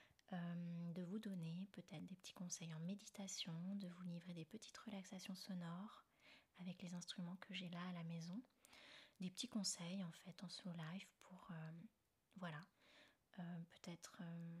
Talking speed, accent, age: 160 wpm, French, 20-39